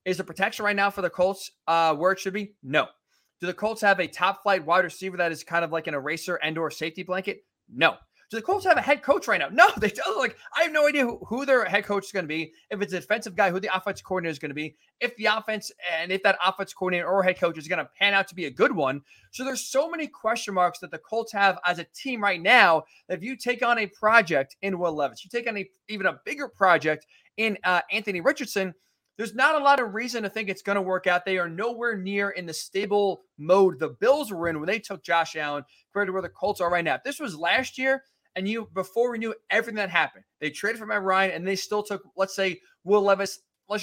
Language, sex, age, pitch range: English, male, 20-39, 175-210 Hz